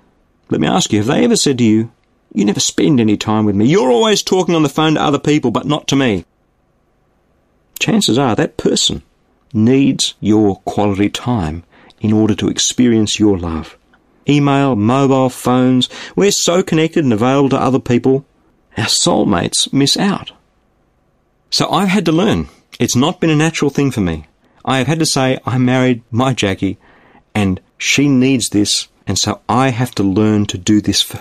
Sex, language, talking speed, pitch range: male, English, 185 wpm, 105-140 Hz